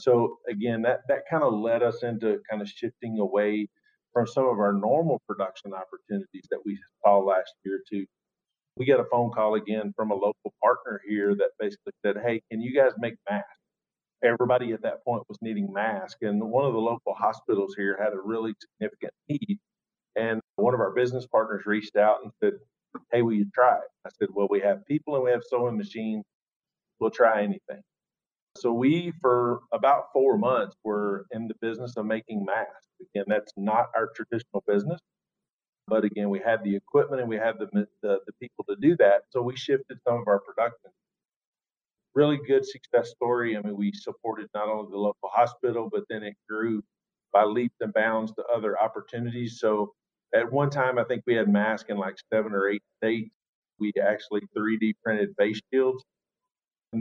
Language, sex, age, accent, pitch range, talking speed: English, male, 50-69, American, 105-125 Hz, 190 wpm